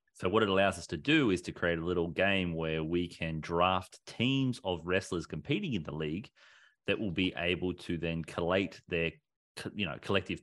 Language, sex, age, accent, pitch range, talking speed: English, male, 30-49, Australian, 80-95 Hz, 200 wpm